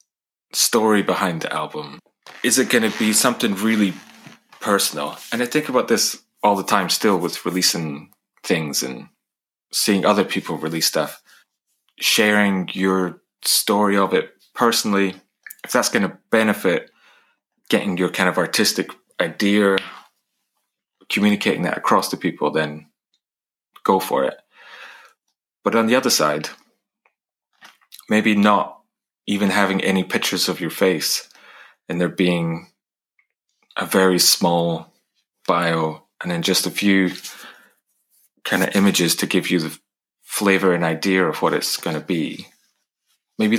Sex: male